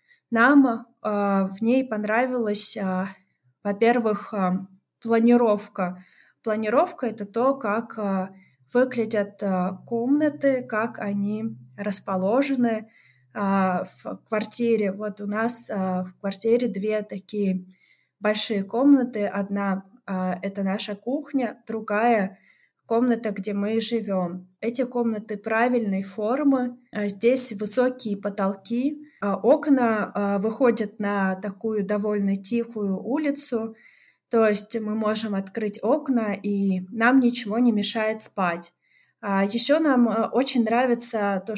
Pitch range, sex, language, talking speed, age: 200-235 Hz, female, Russian, 95 wpm, 20-39